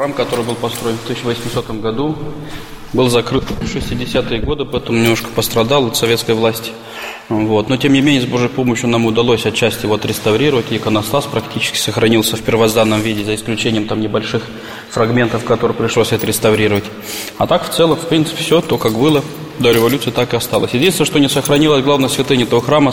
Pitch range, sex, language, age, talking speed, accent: 115-135 Hz, male, Russian, 20-39, 185 wpm, native